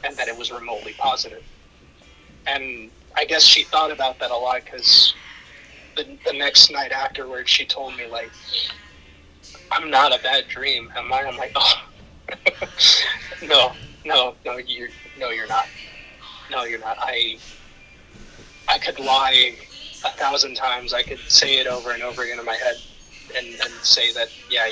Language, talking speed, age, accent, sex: English, 165 wpm, 20-39, American, male